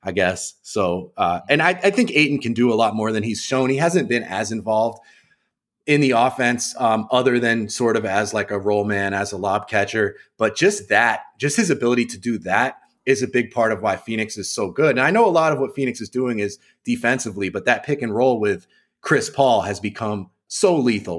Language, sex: English, male